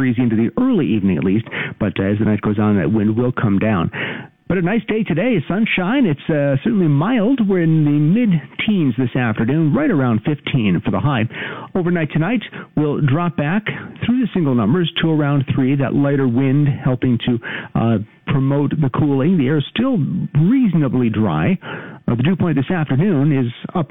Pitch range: 120-160 Hz